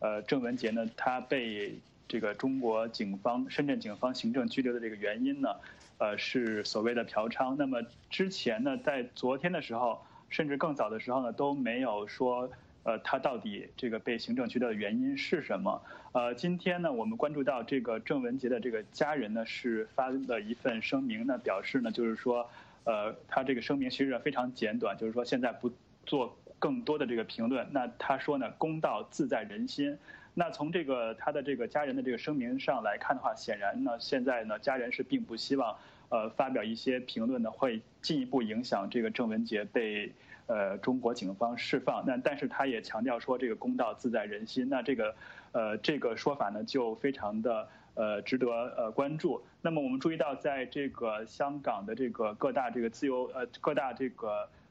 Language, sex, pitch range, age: English, male, 115-180 Hz, 20-39